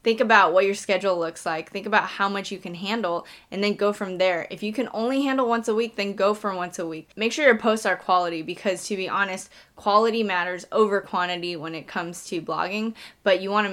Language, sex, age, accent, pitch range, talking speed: English, female, 10-29, American, 180-215 Hz, 240 wpm